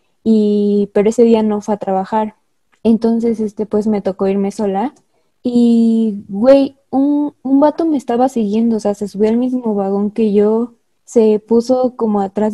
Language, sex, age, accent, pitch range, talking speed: Spanish, female, 20-39, Mexican, 210-245 Hz, 170 wpm